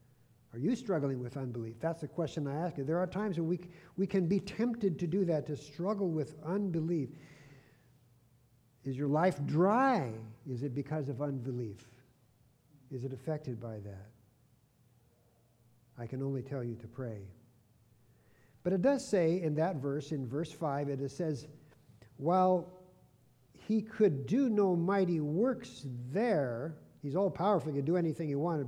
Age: 50-69